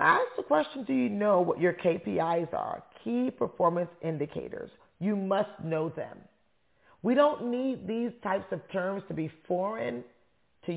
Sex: female